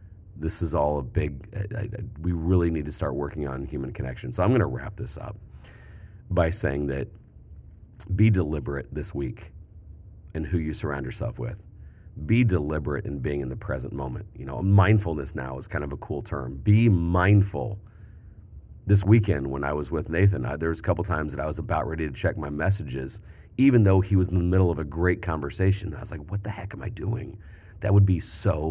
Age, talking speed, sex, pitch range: 40-59, 205 wpm, male, 75-100 Hz